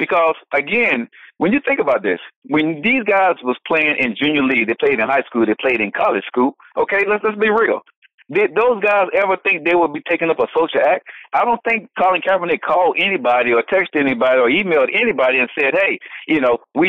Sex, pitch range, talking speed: male, 155-250 Hz, 220 wpm